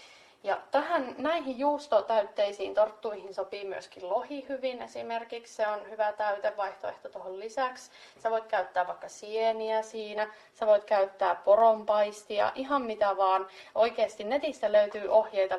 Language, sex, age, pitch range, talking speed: Finnish, female, 30-49, 200-240 Hz, 125 wpm